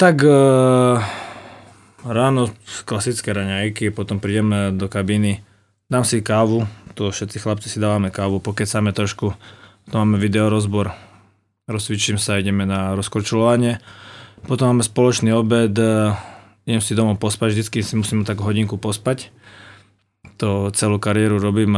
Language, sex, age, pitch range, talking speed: Slovak, male, 20-39, 105-125 Hz, 135 wpm